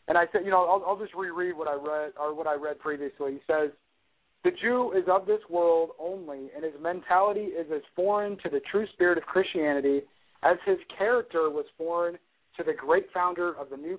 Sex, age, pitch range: male, 40-59, 160-220 Hz